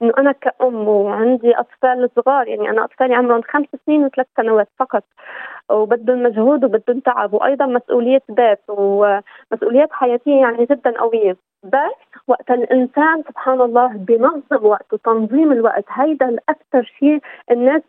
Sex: female